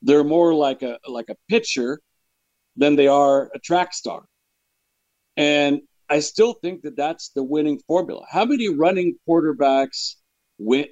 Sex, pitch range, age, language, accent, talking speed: male, 125-160 Hz, 50-69, English, American, 150 wpm